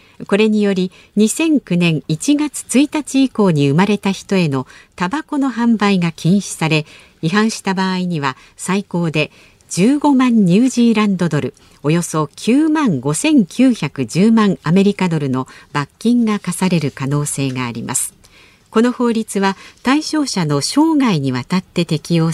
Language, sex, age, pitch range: Japanese, female, 50-69, 155-235 Hz